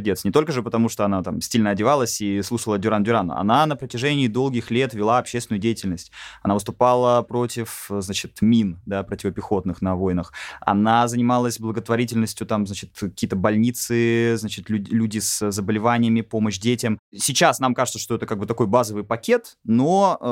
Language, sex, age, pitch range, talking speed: Russian, male, 20-39, 105-125 Hz, 160 wpm